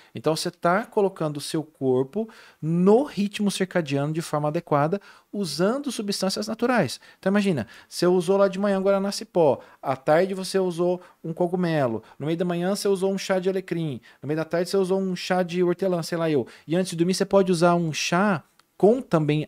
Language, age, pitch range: Portuguese, 40-59, 135-185 Hz